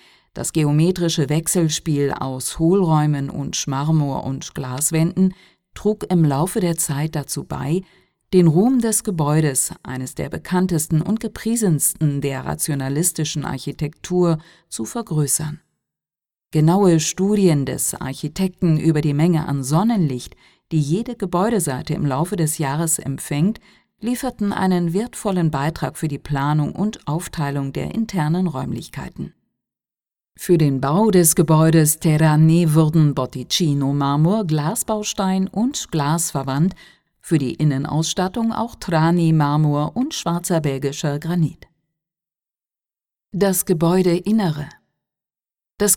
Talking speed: 110 wpm